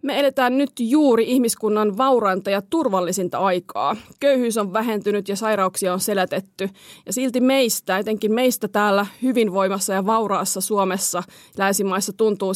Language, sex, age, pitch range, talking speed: Finnish, female, 30-49, 190-235 Hz, 135 wpm